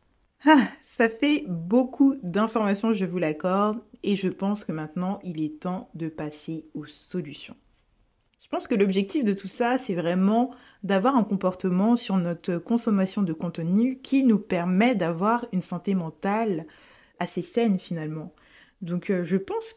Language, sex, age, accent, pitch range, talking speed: French, female, 20-39, French, 175-240 Hz, 150 wpm